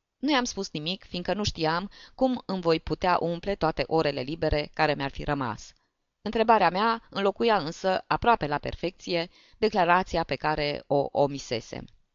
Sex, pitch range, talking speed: female, 145-205 Hz, 155 wpm